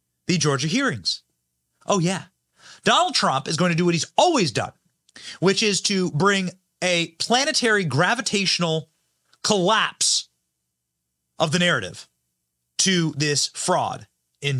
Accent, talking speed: American, 125 wpm